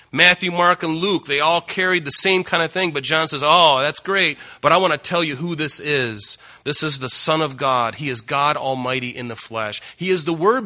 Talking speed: 250 wpm